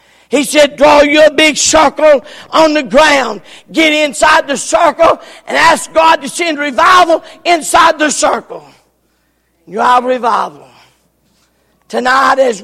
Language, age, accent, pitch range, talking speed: English, 50-69, American, 220-285 Hz, 130 wpm